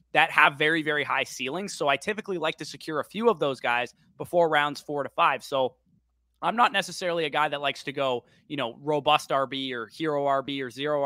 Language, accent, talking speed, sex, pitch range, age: English, American, 220 wpm, male, 130-160 Hz, 20-39